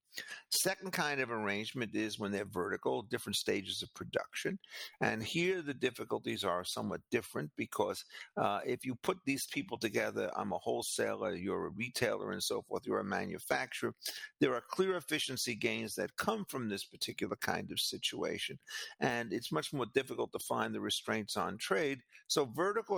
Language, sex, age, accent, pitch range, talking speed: English, male, 50-69, American, 110-150 Hz, 170 wpm